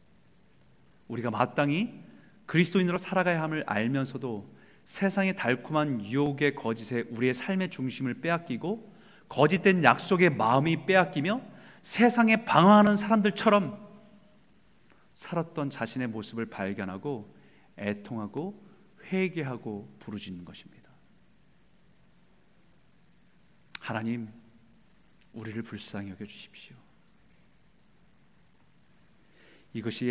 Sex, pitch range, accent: male, 120-205 Hz, native